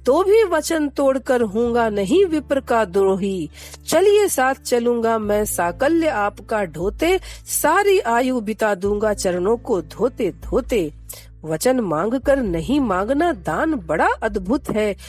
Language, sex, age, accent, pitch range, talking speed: Hindi, female, 50-69, native, 195-280 Hz, 135 wpm